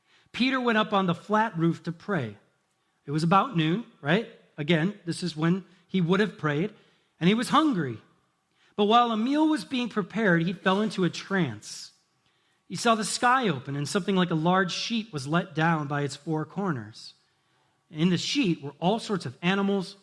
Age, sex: 40-59, male